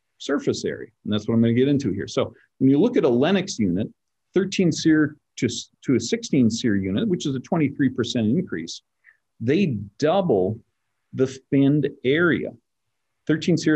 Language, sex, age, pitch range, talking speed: English, male, 50-69, 110-145 Hz, 165 wpm